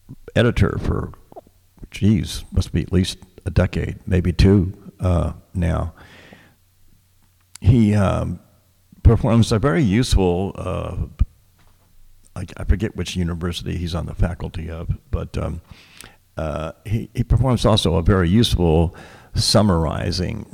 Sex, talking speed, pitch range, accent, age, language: male, 115 wpm, 85-105 Hz, American, 50-69, English